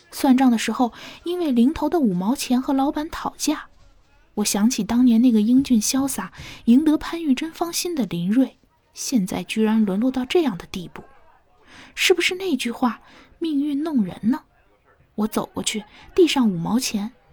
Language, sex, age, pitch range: Chinese, female, 20-39, 220-310 Hz